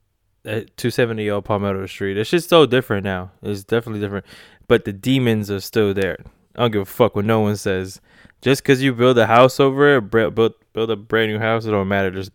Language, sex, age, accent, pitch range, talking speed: English, male, 20-39, American, 100-115 Hz, 215 wpm